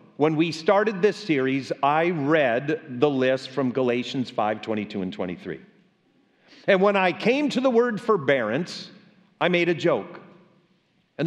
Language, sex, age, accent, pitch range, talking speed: English, male, 50-69, American, 155-205 Hz, 145 wpm